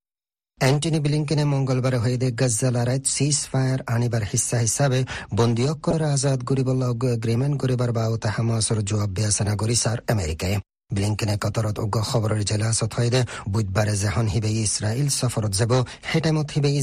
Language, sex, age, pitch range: Bengali, male, 40-59, 105-130 Hz